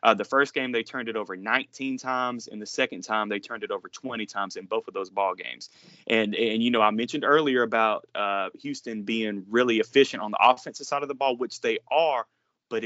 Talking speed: 235 wpm